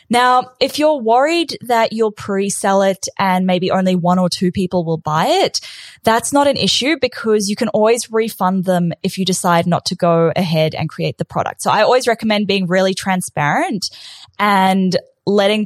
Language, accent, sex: English, Australian, female